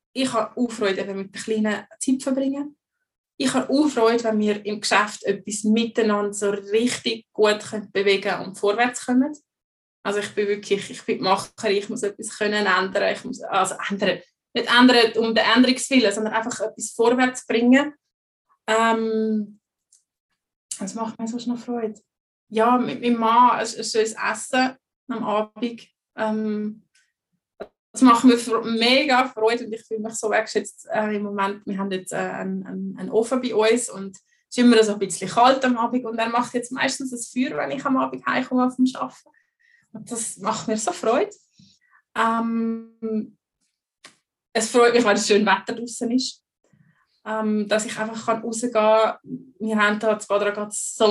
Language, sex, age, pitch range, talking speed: English, female, 20-39, 210-245 Hz, 170 wpm